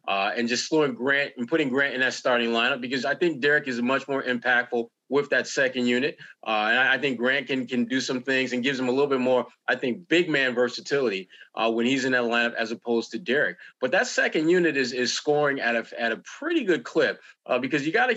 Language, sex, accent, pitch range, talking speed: English, male, American, 120-150 Hz, 250 wpm